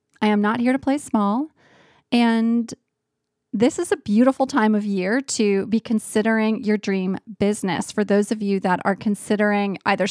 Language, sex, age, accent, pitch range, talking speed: English, female, 30-49, American, 205-250 Hz, 170 wpm